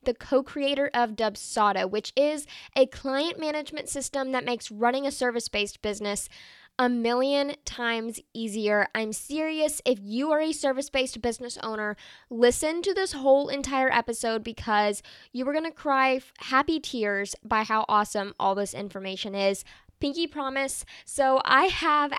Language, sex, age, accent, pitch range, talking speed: English, female, 10-29, American, 215-275 Hz, 145 wpm